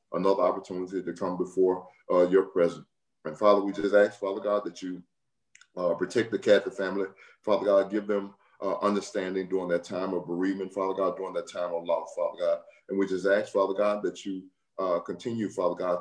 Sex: male